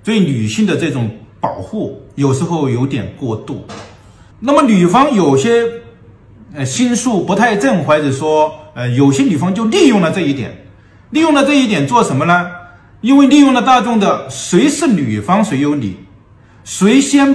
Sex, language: male, Chinese